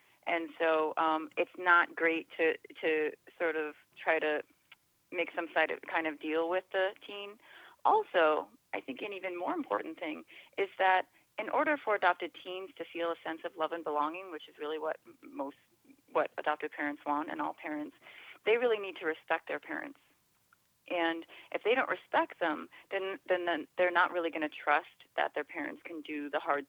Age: 30-49